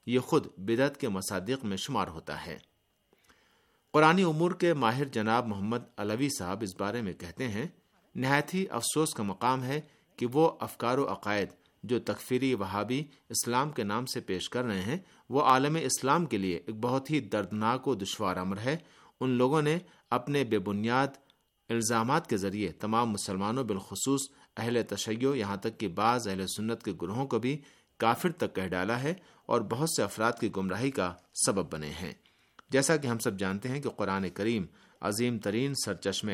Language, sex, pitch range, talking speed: Urdu, male, 100-135 Hz, 180 wpm